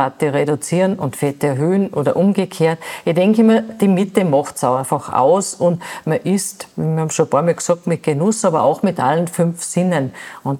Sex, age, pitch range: female, 50-69, 145-185 Hz